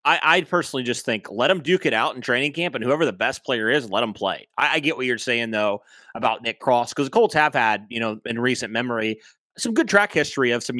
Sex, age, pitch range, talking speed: male, 30-49, 115-150 Hz, 265 wpm